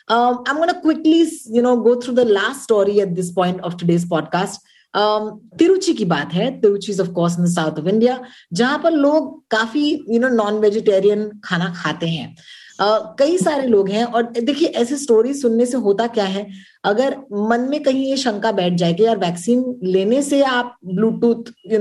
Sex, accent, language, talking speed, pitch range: female, native, Hindi, 185 wpm, 195-270 Hz